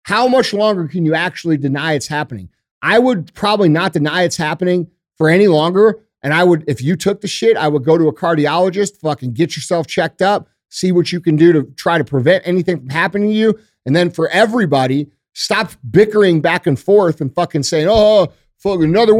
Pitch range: 150-200 Hz